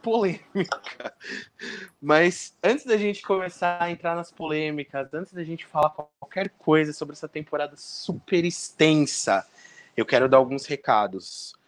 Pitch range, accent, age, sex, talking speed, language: 125-160 Hz, Brazilian, 20-39, male, 135 wpm, Portuguese